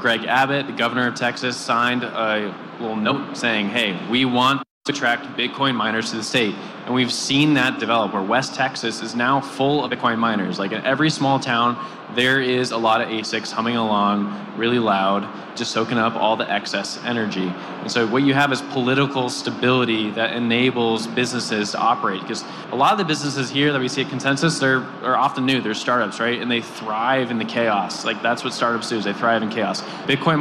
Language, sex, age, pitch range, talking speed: English, male, 20-39, 115-135 Hz, 205 wpm